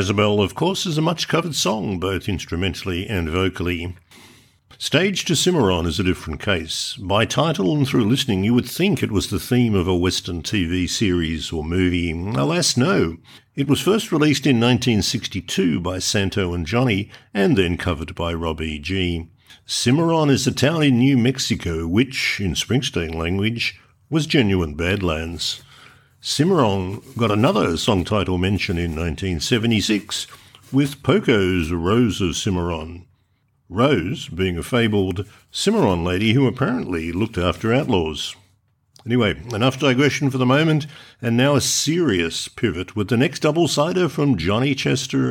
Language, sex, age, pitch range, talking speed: English, male, 60-79, 90-130 Hz, 150 wpm